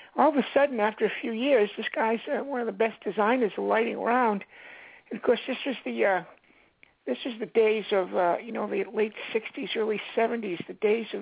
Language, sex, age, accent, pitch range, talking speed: English, male, 60-79, American, 210-270 Hz, 220 wpm